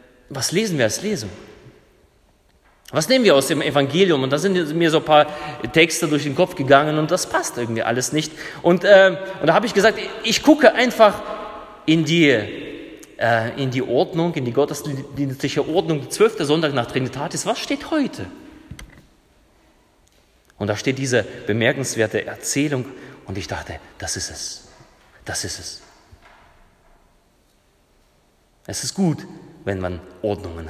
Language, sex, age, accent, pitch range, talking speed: German, male, 30-49, German, 115-190 Hz, 150 wpm